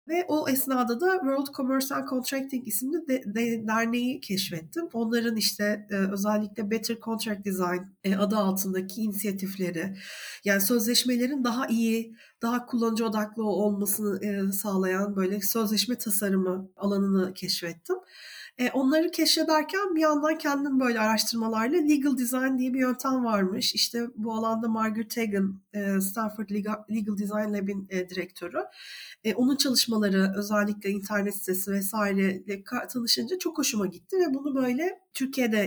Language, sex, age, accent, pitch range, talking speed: Turkish, female, 40-59, native, 200-270 Hz, 125 wpm